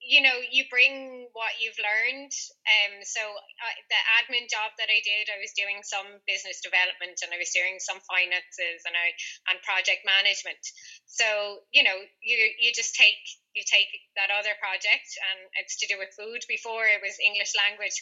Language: English